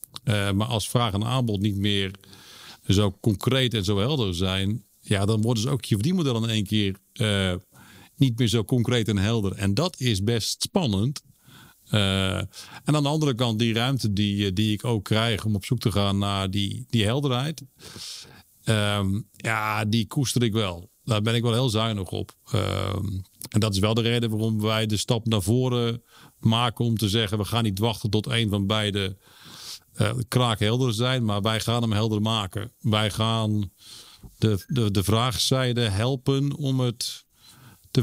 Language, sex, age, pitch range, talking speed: Dutch, male, 50-69, 105-125 Hz, 185 wpm